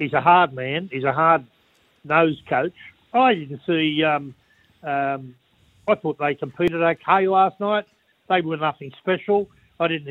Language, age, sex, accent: English, 50-69, male, Australian